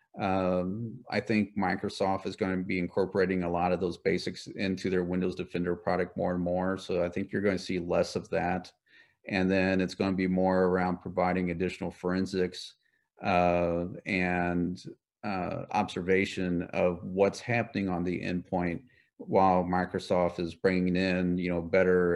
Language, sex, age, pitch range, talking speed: English, male, 40-59, 90-100 Hz, 165 wpm